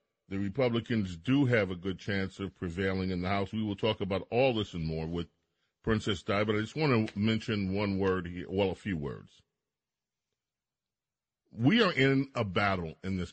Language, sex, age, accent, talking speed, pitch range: English, male, 40-59, American, 195 wpm, 95-120 Hz